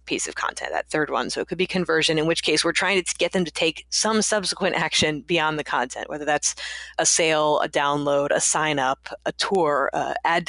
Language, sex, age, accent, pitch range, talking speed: English, female, 20-39, American, 150-185 Hz, 225 wpm